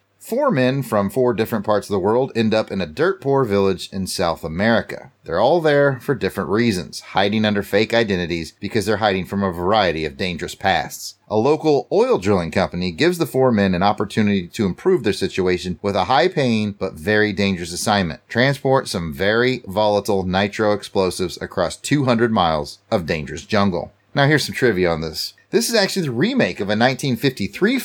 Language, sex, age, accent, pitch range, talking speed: English, male, 30-49, American, 100-135 Hz, 185 wpm